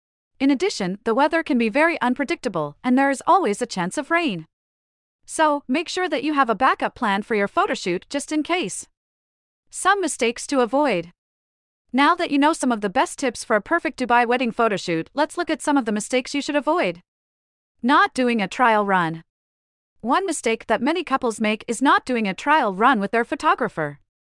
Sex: female